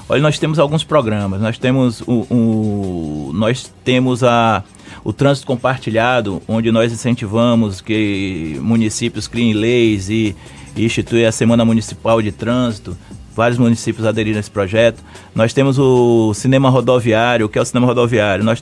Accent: Brazilian